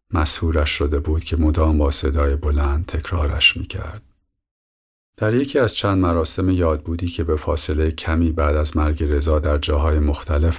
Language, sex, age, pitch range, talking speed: Persian, male, 50-69, 75-85 Hz, 165 wpm